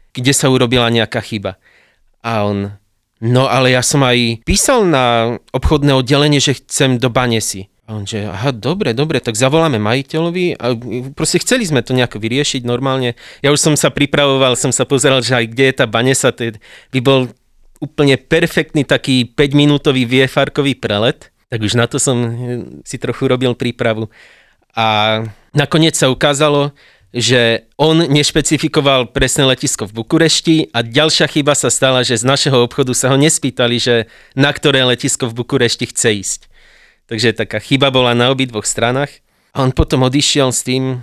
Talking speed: 165 wpm